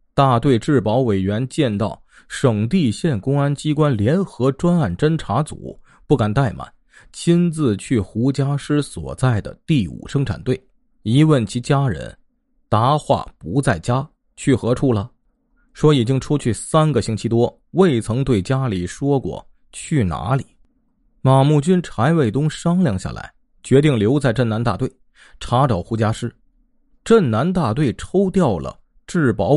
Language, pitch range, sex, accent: Chinese, 115-155 Hz, male, native